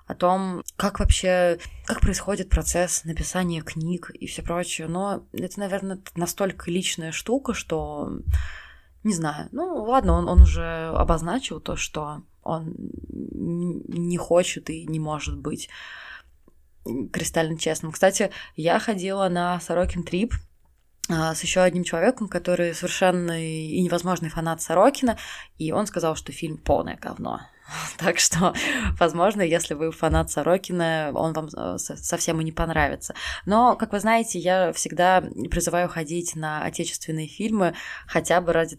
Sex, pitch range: female, 155-180 Hz